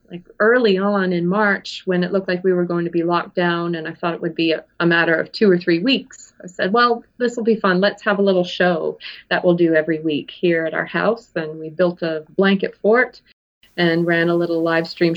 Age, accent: 30-49, American